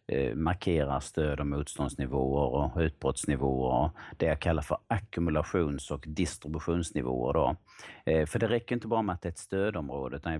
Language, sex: Swedish, male